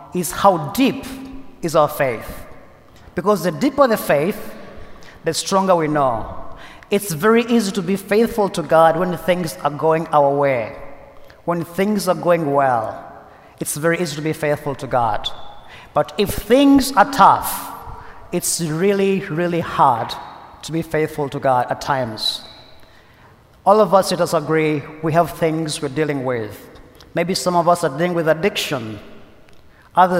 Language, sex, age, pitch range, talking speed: English, male, 30-49, 150-195 Hz, 155 wpm